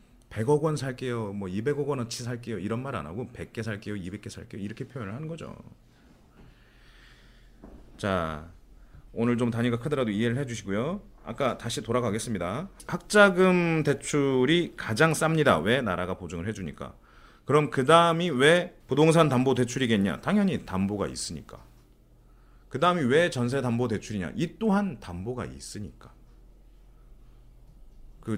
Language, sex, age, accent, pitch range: Korean, male, 30-49, native, 100-145 Hz